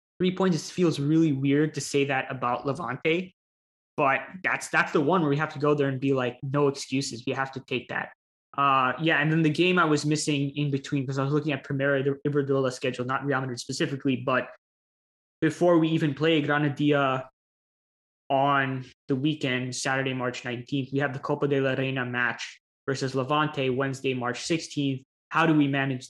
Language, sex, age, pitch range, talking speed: English, male, 20-39, 130-150 Hz, 195 wpm